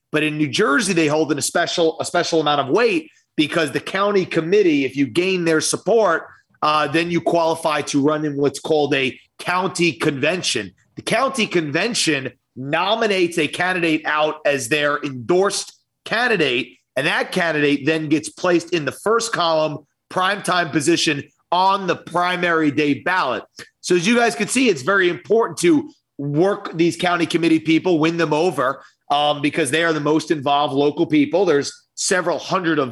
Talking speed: 170 wpm